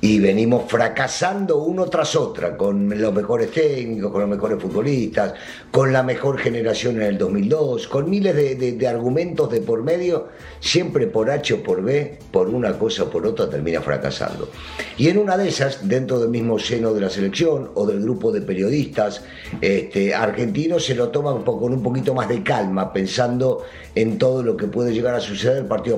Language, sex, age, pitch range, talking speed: Spanish, male, 50-69, 115-155 Hz, 190 wpm